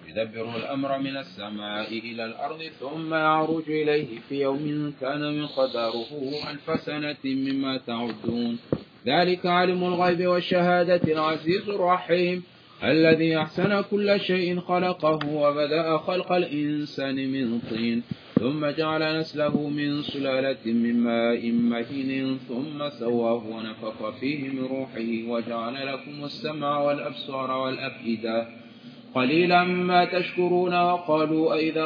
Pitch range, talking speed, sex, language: 135-170 Hz, 110 wpm, male, English